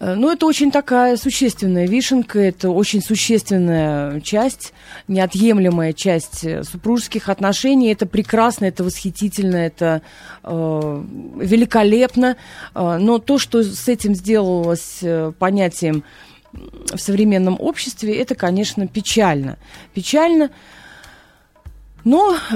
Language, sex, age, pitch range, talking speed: Russian, female, 30-49, 180-245 Hz, 95 wpm